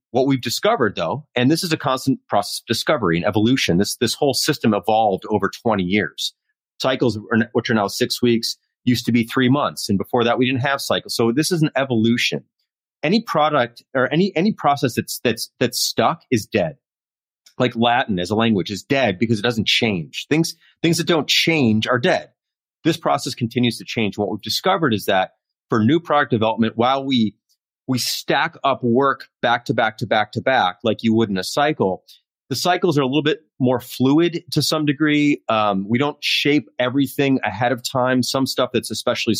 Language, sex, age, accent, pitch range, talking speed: English, male, 30-49, American, 110-140 Hz, 200 wpm